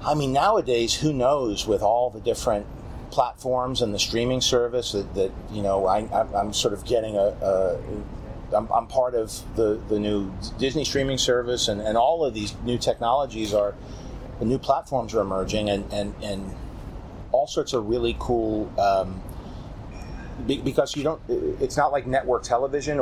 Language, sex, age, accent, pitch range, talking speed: English, male, 40-59, American, 105-125 Hz, 165 wpm